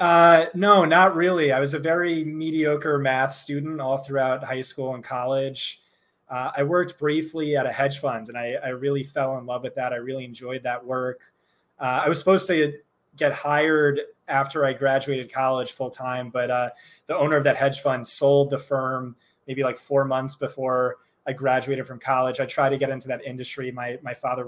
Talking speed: 200 wpm